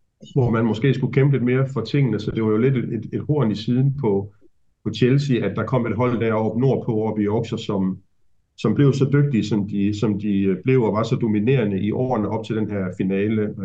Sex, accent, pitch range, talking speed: male, native, 100-120 Hz, 240 wpm